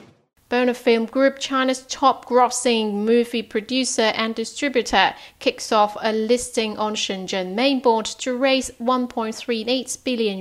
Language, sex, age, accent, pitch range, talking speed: English, female, 30-49, British, 205-245 Hz, 115 wpm